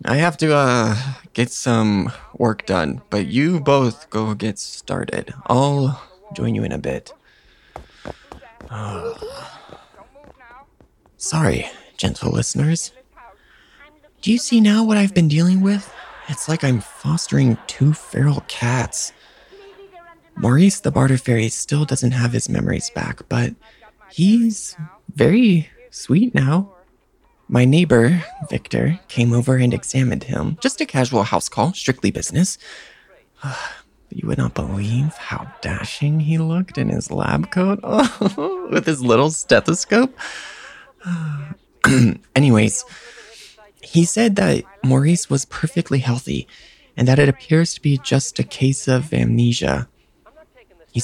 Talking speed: 125 wpm